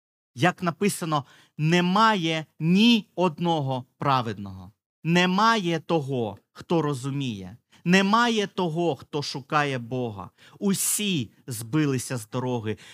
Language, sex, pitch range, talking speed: Ukrainian, male, 125-185 Hz, 90 wpm